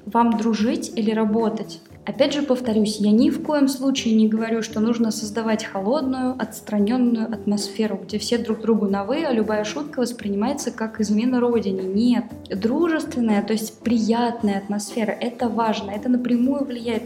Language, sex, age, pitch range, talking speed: Russian, female, 20-39, 210-250 Hz, 150 wpm